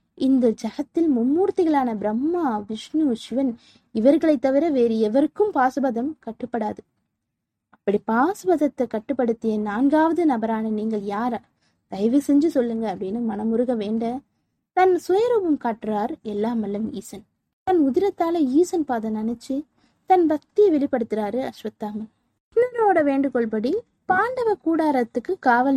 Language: Tamil